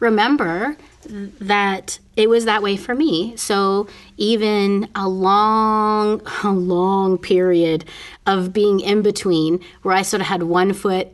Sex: female